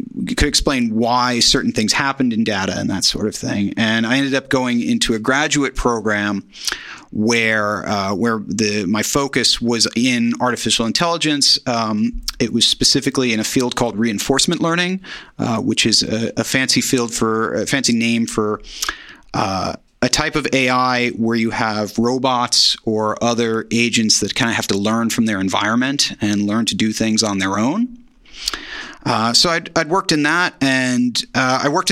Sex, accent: male, American